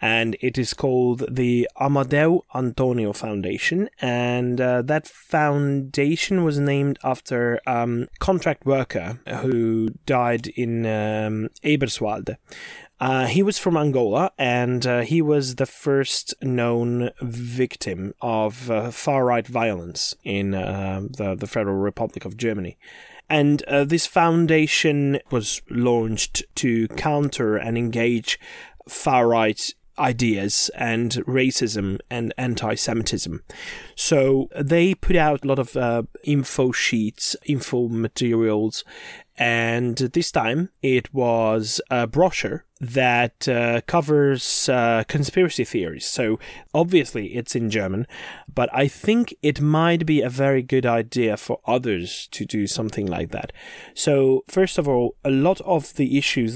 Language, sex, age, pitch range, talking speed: English, male, 20-39, 115-145 Hz, 130 wpm